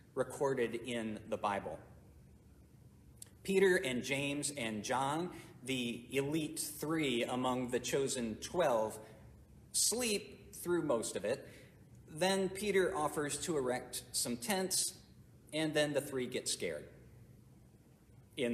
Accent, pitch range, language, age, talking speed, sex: American, 120-165 Hz, English, 50-69, 115 wpm, male